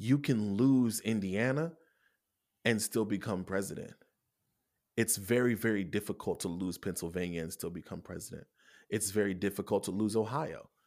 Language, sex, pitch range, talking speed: English, male, 105-140 Hz, 140 wpm